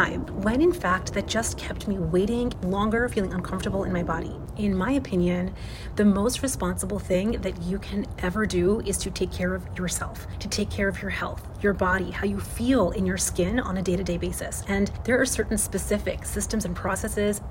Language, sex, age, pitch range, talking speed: English, female, 30-49, 180-210 Hz, 200 wpm